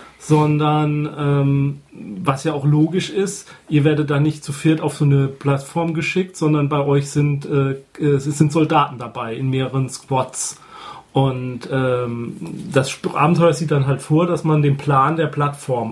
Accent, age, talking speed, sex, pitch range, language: German, 30-49, 165 wpm, male, 130-155 Hz, German